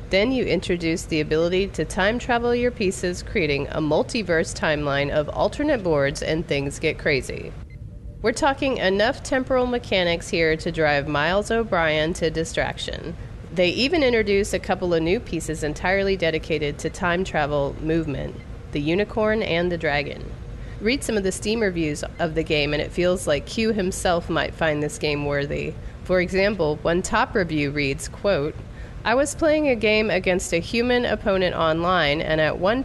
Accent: American